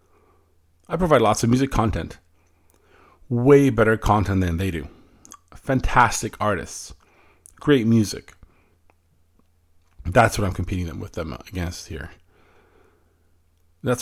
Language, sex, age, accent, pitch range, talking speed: English, male, 40-59, American, 85-120 Hz, 110 wpm